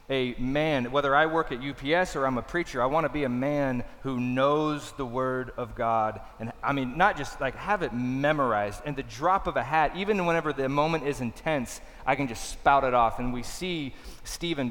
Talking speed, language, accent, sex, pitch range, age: 220 wpm, English, American, male, 120-145 Hz, 30-49